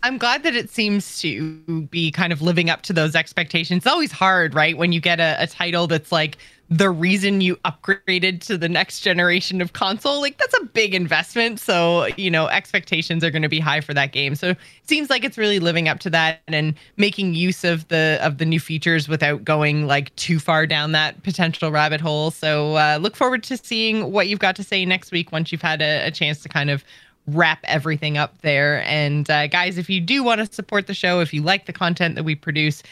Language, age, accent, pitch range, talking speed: English, 20-39, American, 155-200 Hz, 235 wpm